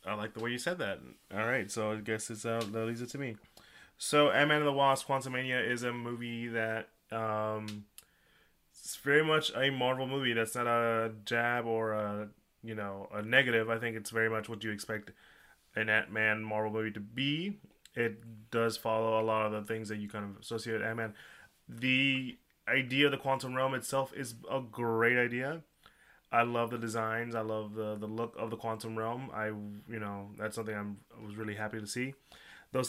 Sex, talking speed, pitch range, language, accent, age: male, 205 wpm, 110-130 Hz, English, American, 20-39